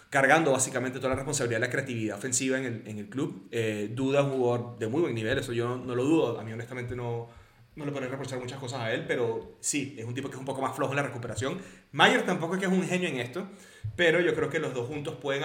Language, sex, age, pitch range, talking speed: Spanish, male, 30-49, 120-165 Hz, 270 wpm